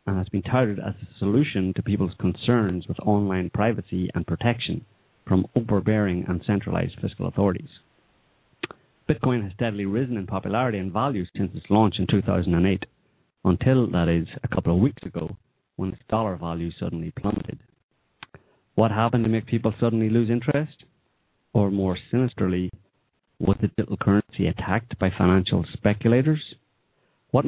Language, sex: English, male